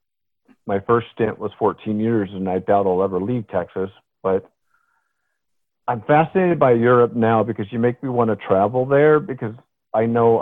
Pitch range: 100-120 Hz